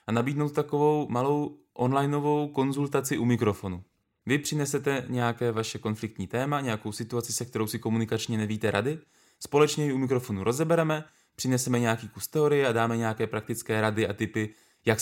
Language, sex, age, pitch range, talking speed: Czech, male, 20-39, 110-130 Hz, 155 wpm